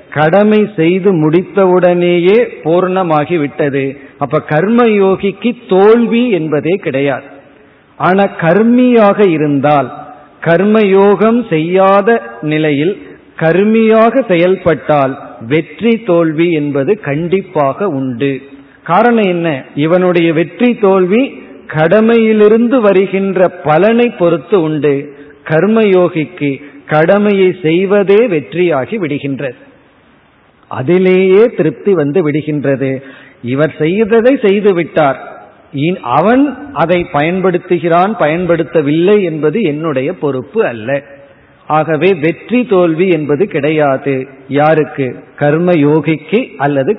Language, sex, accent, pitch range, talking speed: Tamil, male, native, 145-195 Hz, 80 wpm